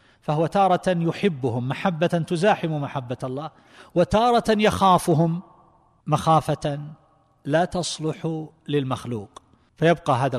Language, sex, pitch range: Arabic, male, 125-160 Hz